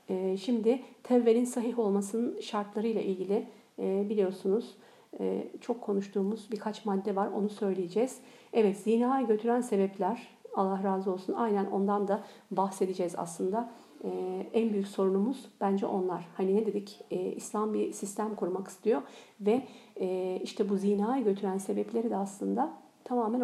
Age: 50-69